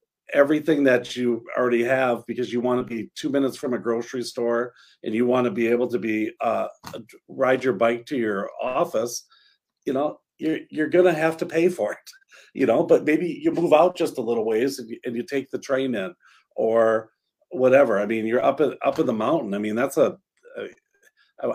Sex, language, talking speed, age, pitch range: male, English, 210 wpm, 50-69, 120-160 Hz